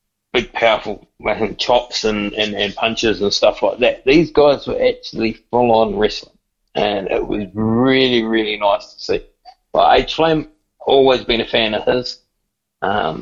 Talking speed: 155 wpm